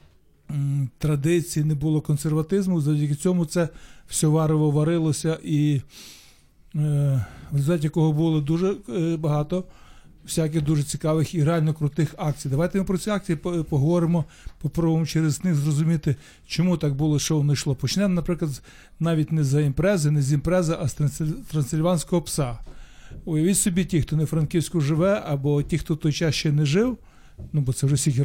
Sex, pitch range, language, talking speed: male, 145-165 Hz, Ukrainian, 155 wpm